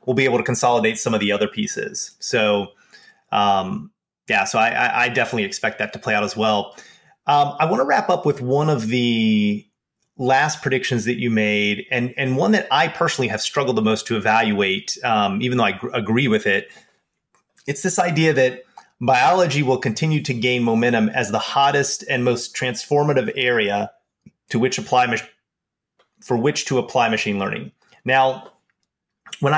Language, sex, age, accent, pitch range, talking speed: English, male, 30-49, American, 110-140 Hz, 180 wpm